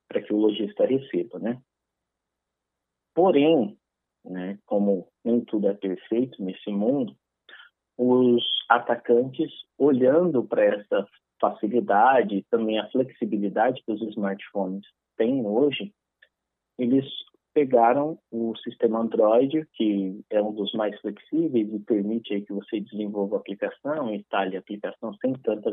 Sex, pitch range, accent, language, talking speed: male, 105-140 Hz, Brazilian, Portuguese, 125 wpm